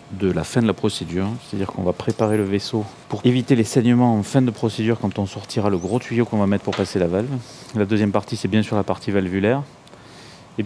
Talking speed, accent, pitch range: 240 wpm, French, 100-120 Hz